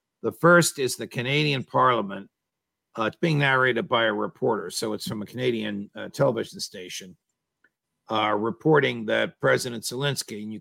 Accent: American